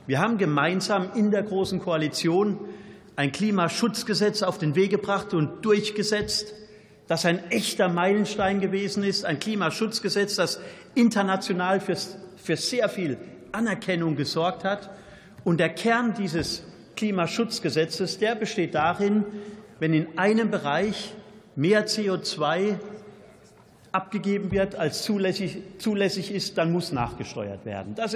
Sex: male